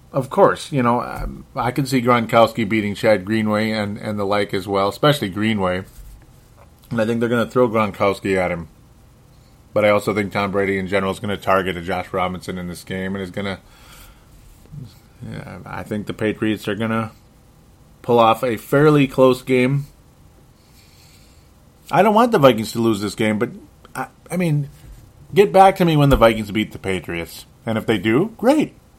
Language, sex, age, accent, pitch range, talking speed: English, male, 30-49, American, 100-125 Hz, 190 wpm